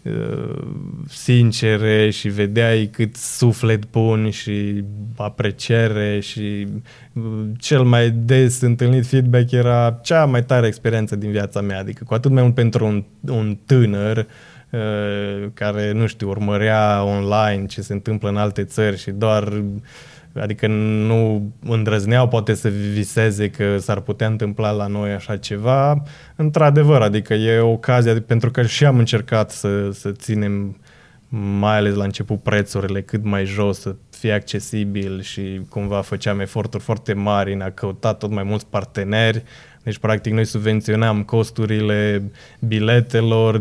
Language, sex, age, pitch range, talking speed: Romanian, male, 20-39, 105-115 Hz, 140 wpm